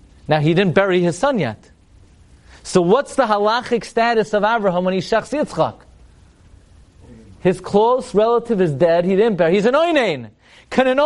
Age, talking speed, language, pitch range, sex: 30-49, 165 wpm, English, 150-245 Hz, male